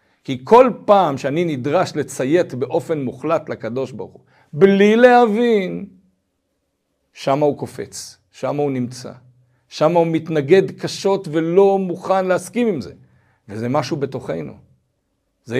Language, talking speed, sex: Hebrew, 125 wpm, male